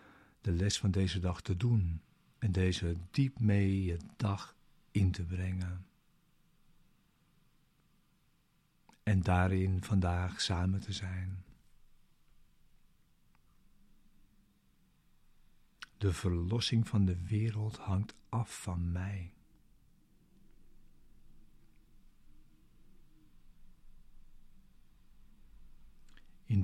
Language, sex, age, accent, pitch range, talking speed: Dutch, male, 60-79, Dutch, 95-115 Hz, 70 wpm